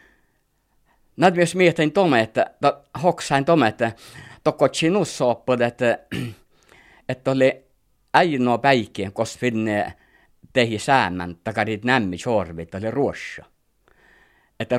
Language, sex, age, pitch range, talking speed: Finnish, male, 50-69, 95-135 Hz, 90 wpm